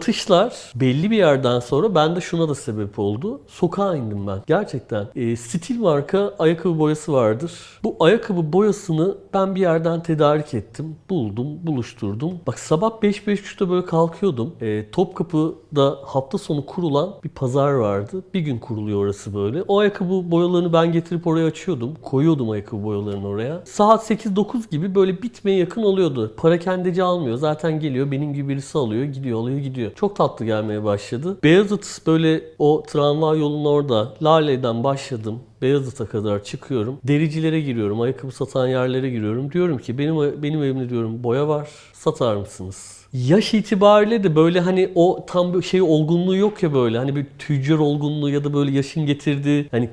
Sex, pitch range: male, 125-175 Hz